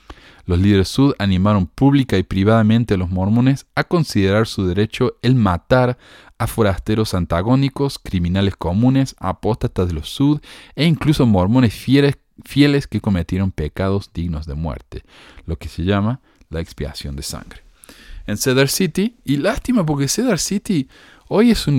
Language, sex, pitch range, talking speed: Spanish, male, 80-115 Hz, 150 wpm